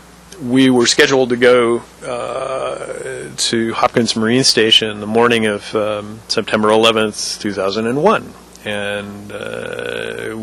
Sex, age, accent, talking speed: male, 40-59, American, 105 wpm